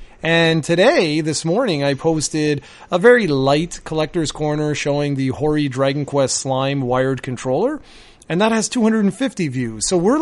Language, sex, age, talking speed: English, male, 30-49, 155 wpm